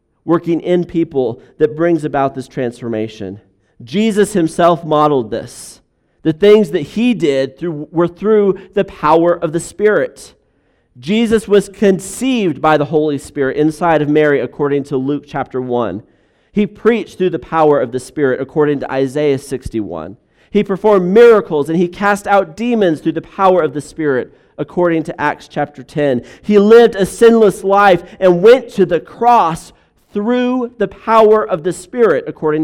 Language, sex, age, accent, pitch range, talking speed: English, male, 40-59, American, 140-200 Hz, 160 wpm